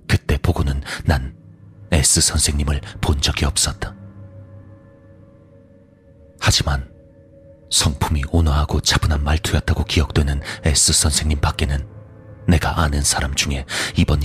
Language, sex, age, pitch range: Korean, male, 40-59, 75-100 Hz